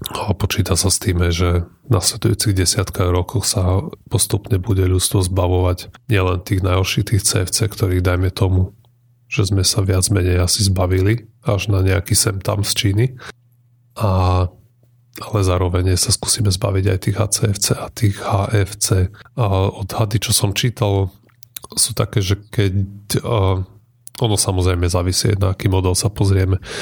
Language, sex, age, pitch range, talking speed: Slovak, male, 30-49, 95-115 Hz, 145 wpm